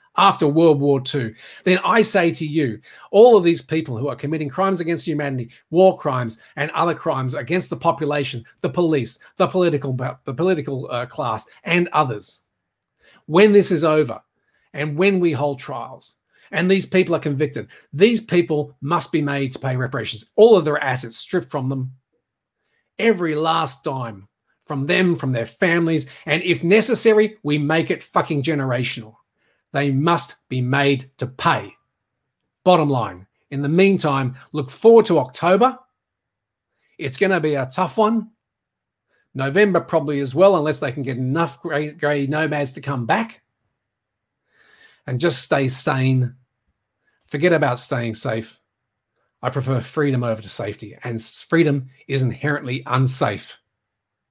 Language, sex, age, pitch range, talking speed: English, male, 40-59, 130-170 Hz, 150 wpm